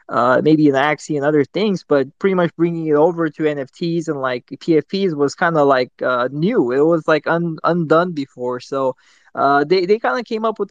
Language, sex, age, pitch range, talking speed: English, male, 20-39, 140-185 Hz, 215 wpm